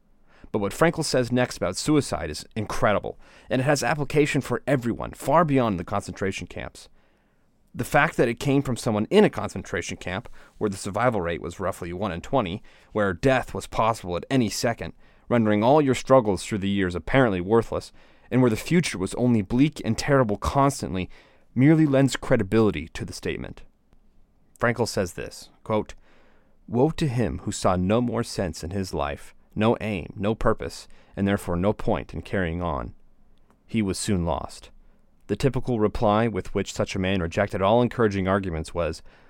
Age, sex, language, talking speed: 30-49, male, English, 175 wpm